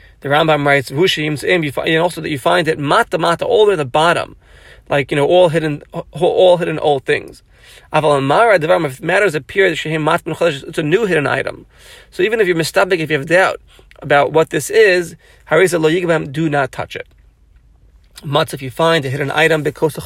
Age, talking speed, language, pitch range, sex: 40-59, 185 wpm, English, 145-180 Hz, male